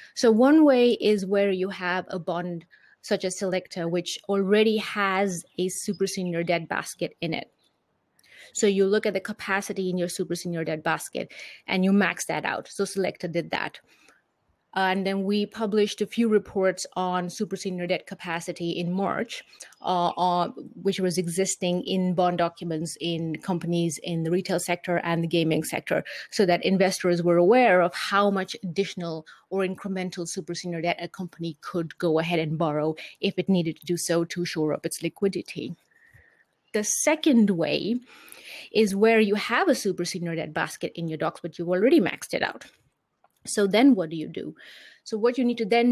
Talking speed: 185 wpm